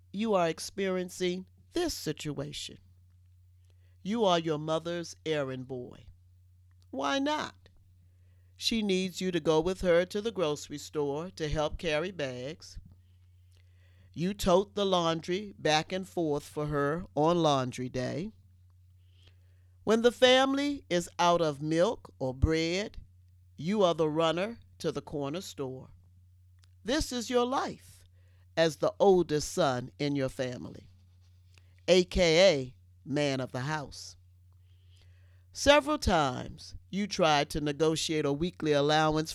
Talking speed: 125 wpm